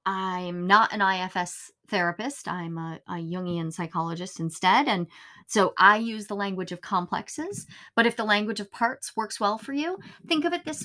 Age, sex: 30-49, female